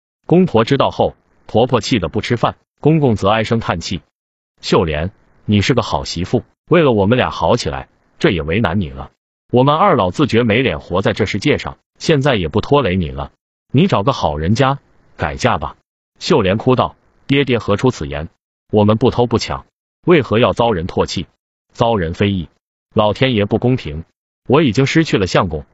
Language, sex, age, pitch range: Chinese, male, 30-49, 90-130 Hz